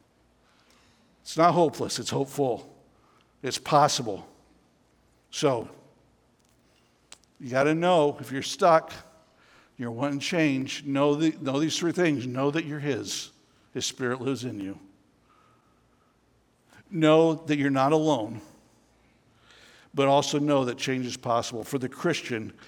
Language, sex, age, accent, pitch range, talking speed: English, male, 60-79, American, 135-170 Hz, 120 wpm